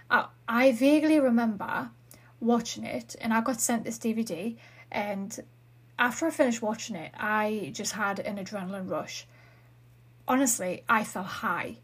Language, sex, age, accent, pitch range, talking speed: English, female, 30-49, British, 200-255 Hz, 135 wpm